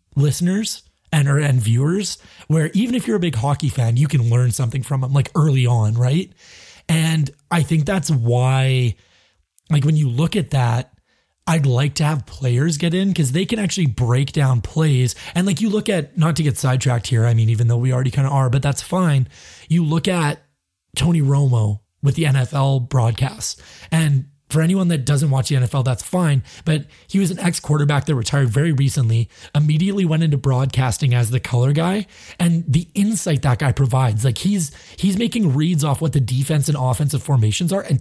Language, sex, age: English, male, 30-49